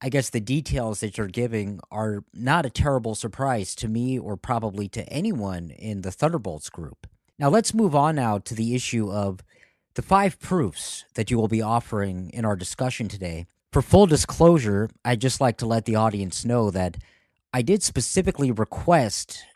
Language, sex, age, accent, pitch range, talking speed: English, male, 40-59, American, 105-140 Hz, 180 wpm